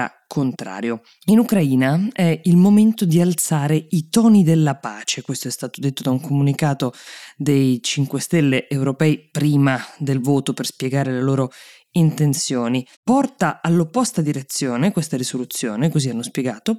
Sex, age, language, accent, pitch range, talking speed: female, 20-39, Italian, native, 130-175 Hz, 140 wpm